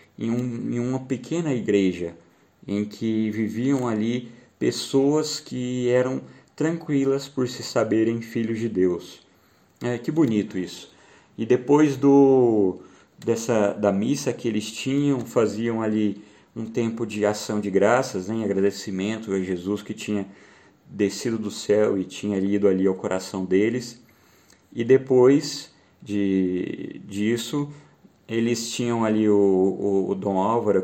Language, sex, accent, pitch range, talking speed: Portuguese, male, Brazilian, 100-120 Hz, 125 wpm